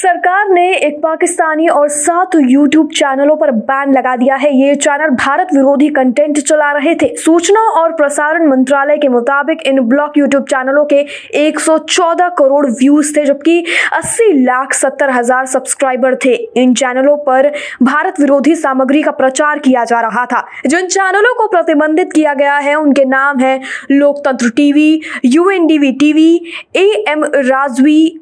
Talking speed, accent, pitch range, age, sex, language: 150 wpm, native, 270-320 Hz, 20-39, female, Hindi